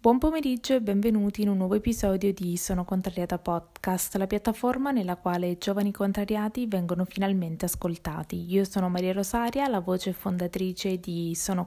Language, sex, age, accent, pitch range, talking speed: Italian, female, 20-39, native, 185-220 Hz, 160 wpm